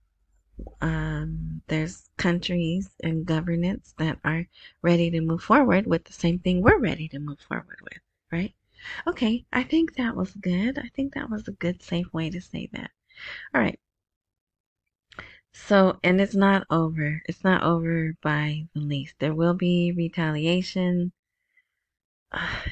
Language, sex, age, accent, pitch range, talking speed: English, female, 30-49, American, 160-210 Hz, 150 wpm